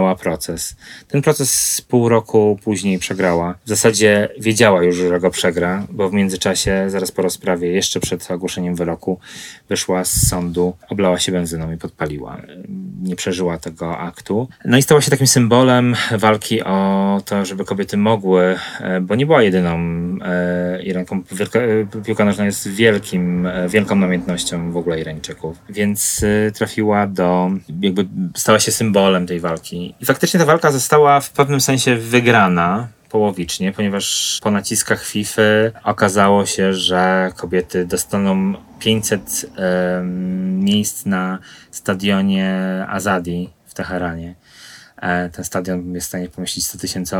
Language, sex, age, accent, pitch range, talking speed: Polish, male, 30-49, native, 90-110 Hz, 135 wpm